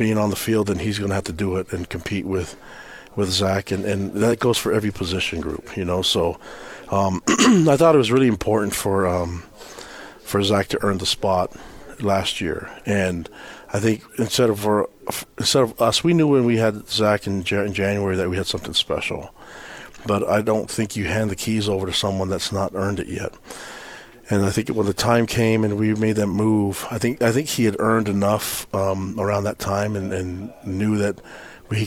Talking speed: 210 wpm